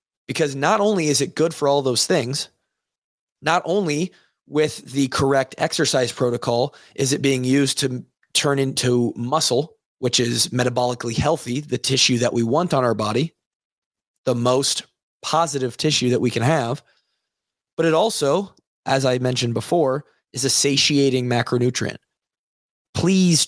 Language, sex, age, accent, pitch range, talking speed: English, male, 20-39, American, 125-150 Hz, 145 wpm